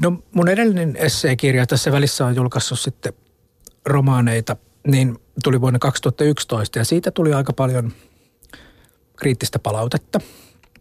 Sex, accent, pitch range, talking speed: male, native, 115-145 Hz, 115 wpm